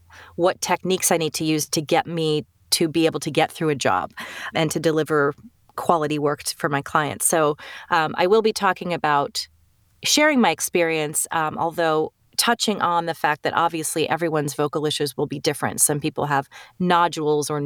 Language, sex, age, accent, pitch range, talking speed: English, female, 30-49, American, 150-175 Hz, 185 wpm